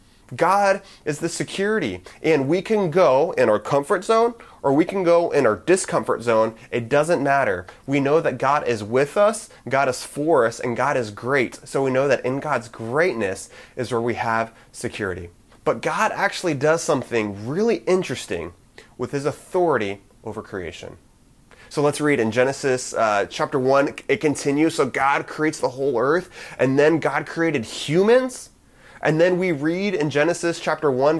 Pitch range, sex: 120-165 Hz, male